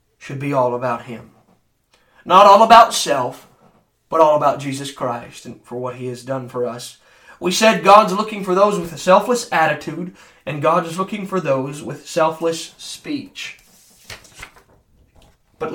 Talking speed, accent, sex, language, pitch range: 160 wpm, American, male, English, 130-195 Hz